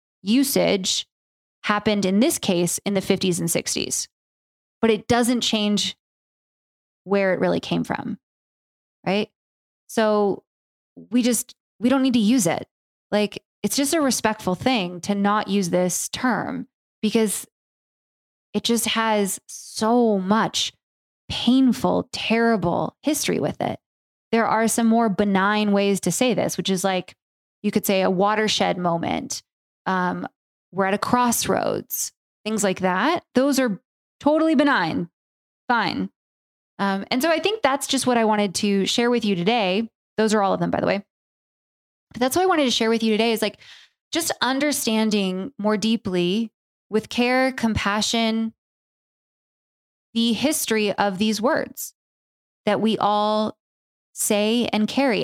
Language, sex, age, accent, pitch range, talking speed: English, female, 20-39, American, 195-240 Hz, 145 wpm